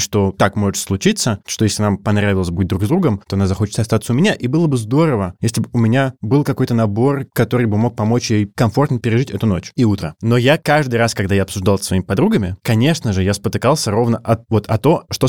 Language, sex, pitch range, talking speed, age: Russian, male, 105-145 Hz, 235 wpm, 20-39